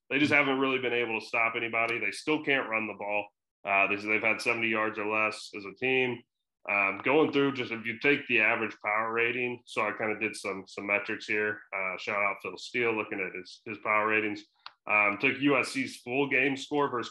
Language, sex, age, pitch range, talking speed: English, male, 30-49, 105-120 Hz, 225 wpm